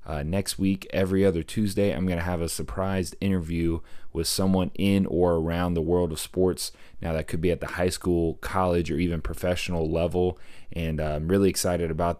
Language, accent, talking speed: English, American, 200 wpm